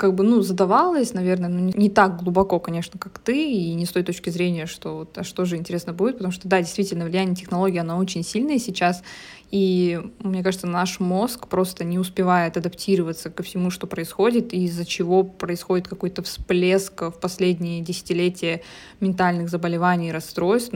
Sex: female